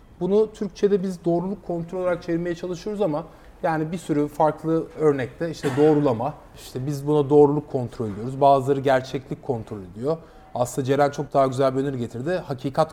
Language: Turkish